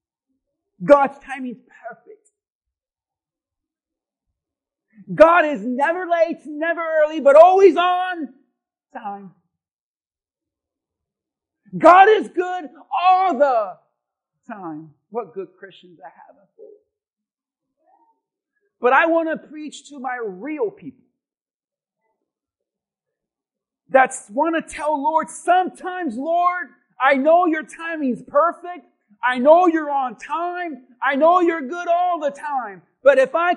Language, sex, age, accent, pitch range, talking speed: English, male, 50-69, American, 250-350 Hz, 115 wpm